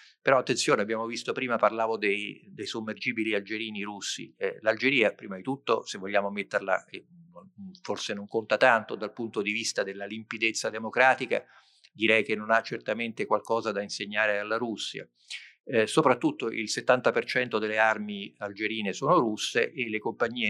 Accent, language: native, Italian